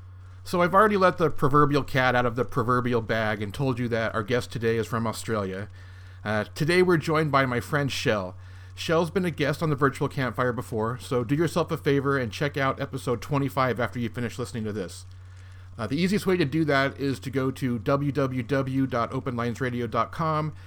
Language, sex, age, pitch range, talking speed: English, male, 40-59, 115-155 Hz, 195 wpm